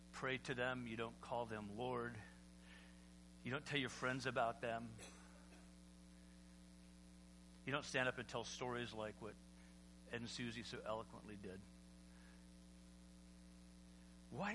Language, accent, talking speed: English, American, 130 wpm